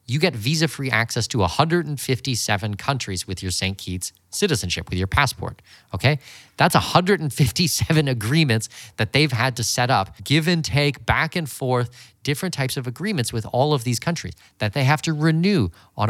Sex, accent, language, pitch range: male, American, English, 100-145 Hz